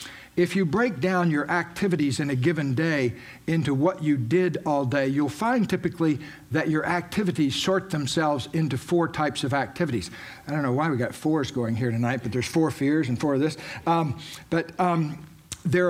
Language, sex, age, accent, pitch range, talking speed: English, male, 60-79, American, 135-175 Hz, 195 wpm